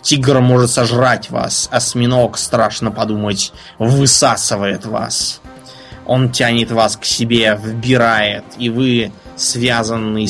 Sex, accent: male, native